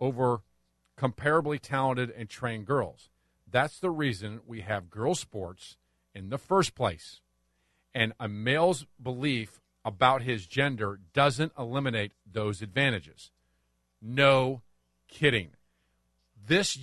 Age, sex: 50-69, male